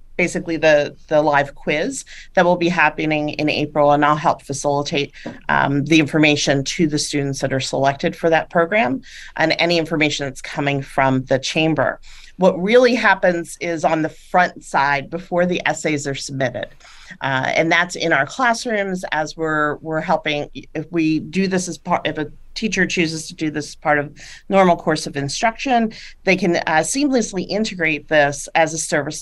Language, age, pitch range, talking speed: English, 40-59, 150-180 Hz, 175 wpm